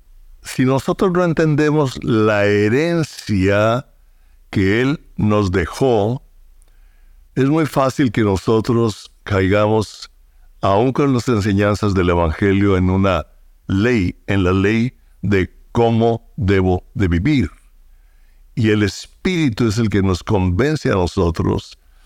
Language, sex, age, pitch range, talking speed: Spanish, male, 60-79, 90-115 Hz, 115 wpm